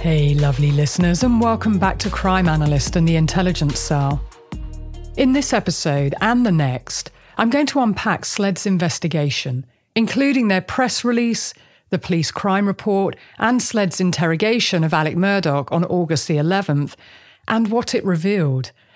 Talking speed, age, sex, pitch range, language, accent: 150 wpm, 40-59, female, 145-215 Hz, English, British